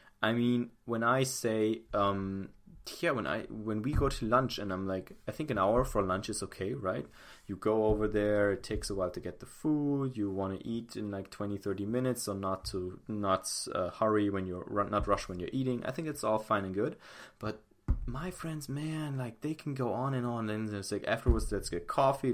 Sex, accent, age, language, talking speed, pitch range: male, German, 20-39, English, 230 wpm, 100-125 Hz